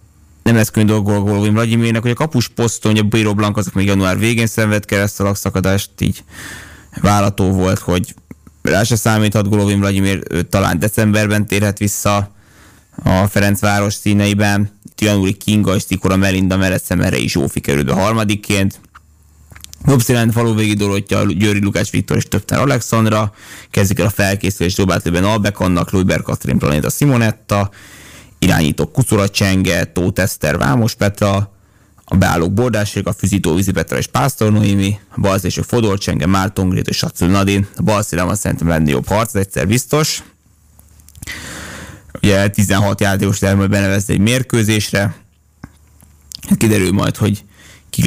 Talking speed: 140 wpm